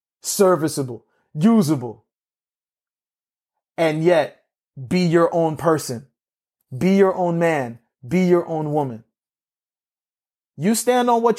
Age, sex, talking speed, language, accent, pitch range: 30-49, male, 105 wpm, English, American, 145-175 Hz